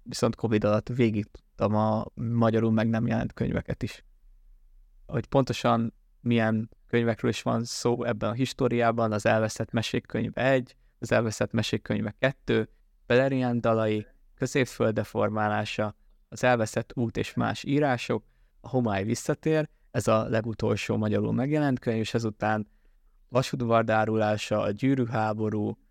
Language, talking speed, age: Hungarian, 120 wpm, 20-39